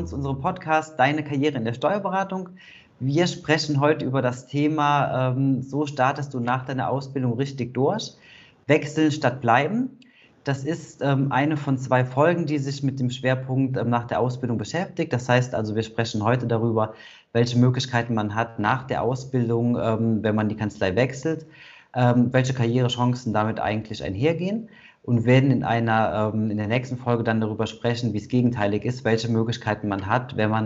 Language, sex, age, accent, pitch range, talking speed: German, male, 30-49, German, 115-145 Hz, 160 wpm